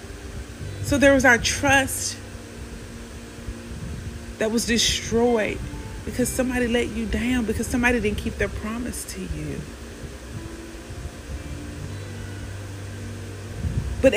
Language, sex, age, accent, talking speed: English, female, 40-59, American, 95 wpm